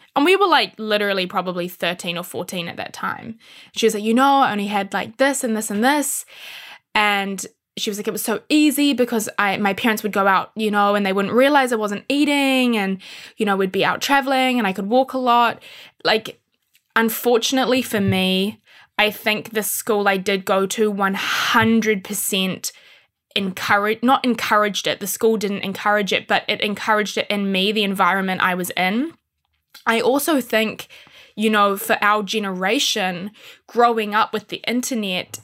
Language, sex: English, female